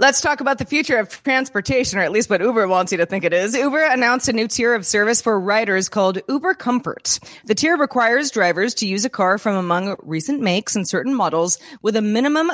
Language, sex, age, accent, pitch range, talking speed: English, female, 30-49, American, 175-250 Hz, 230 wpm